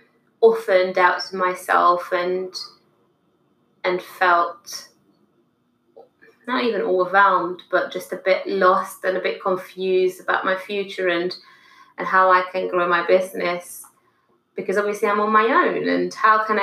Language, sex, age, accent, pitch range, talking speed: English, female, 20-39, British, 180-220 Hz, 135 wpm